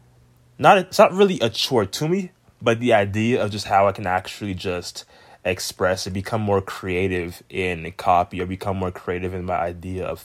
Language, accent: English, American